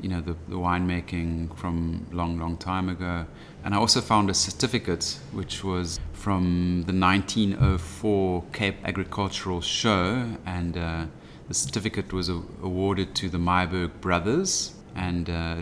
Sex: male